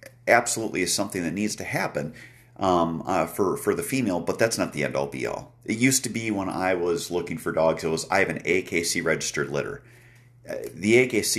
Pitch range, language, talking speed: 80-120 Hz, English, 205 wpm